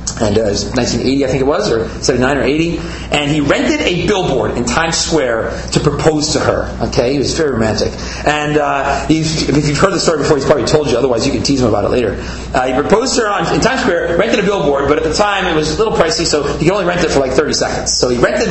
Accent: American